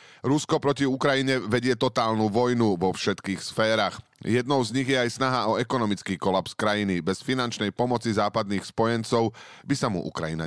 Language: Slovak